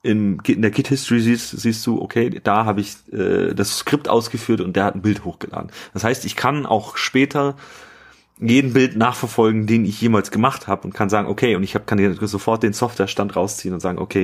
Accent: German